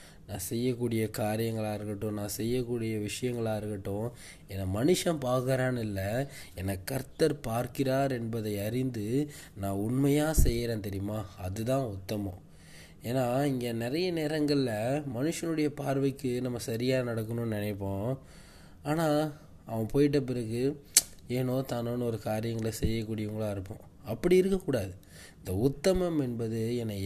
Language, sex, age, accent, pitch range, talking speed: Tamil, male, 20-39, native, 105-135 Hz, 105 wpm